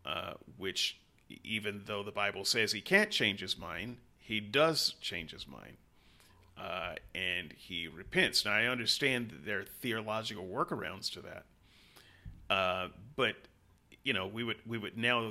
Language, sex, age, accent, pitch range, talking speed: English, male, 30-49, American, 100-115 Hz, 155 wpm